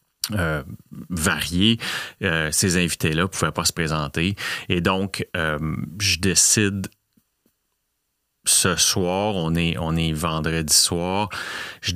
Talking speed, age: 120 wpm, 30-49